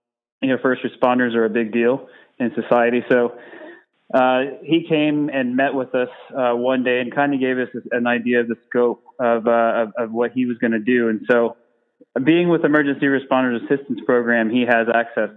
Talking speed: 205 wpm